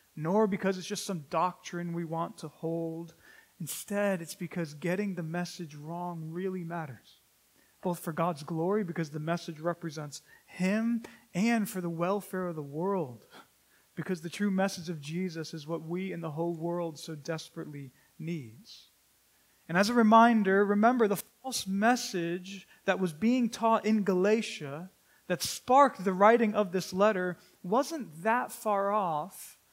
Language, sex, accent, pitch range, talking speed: English, male, American, 170-215 Hz, 155 wpm